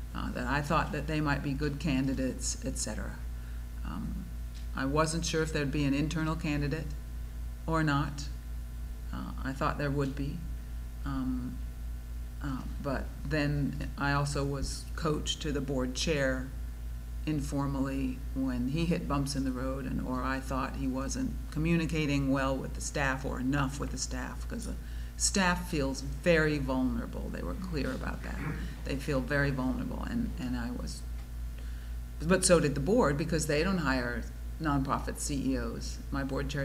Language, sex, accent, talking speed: English, female, American, 160 wpm